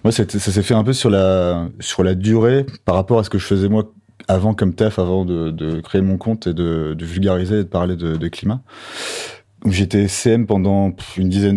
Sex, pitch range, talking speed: male, 95-115 Hz, 230 wpm